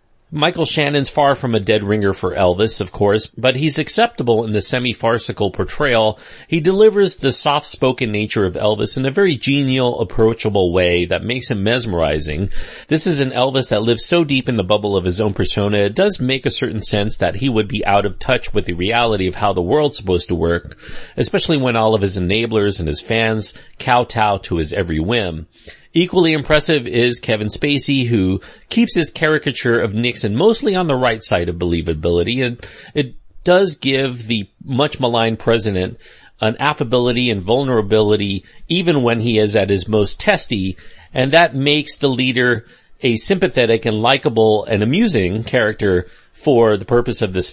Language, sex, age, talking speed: English, male, 40-59, 180 wpm